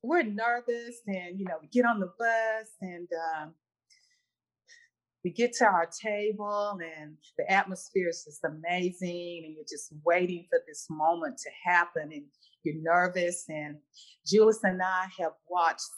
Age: 40-59